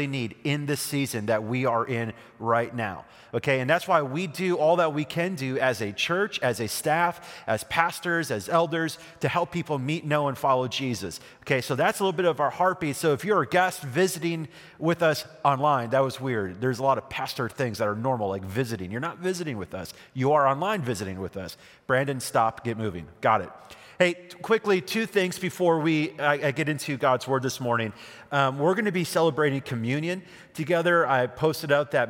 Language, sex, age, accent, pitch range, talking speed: English, male, 30-49, American, 125-160 Hz, 215 wpm